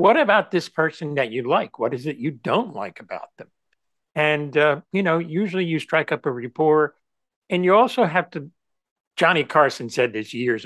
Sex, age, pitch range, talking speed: male, 60-79, 130-175 Hz, 195 wpm